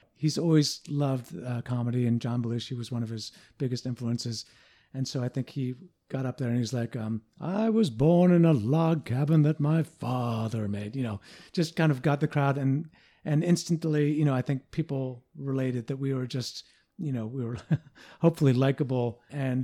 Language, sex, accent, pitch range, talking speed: English, male, American, 120-145 Hz, 200 wpm